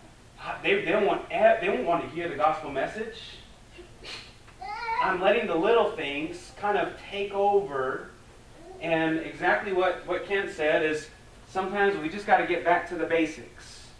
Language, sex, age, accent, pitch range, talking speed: English, male, 30-49, American, 140-185 Hz, 165 wpm